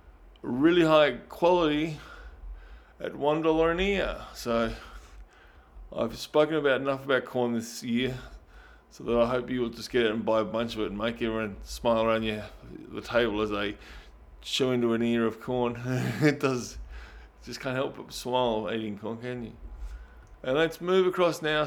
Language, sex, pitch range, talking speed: English, male, 115-155 Hz, 175 wpm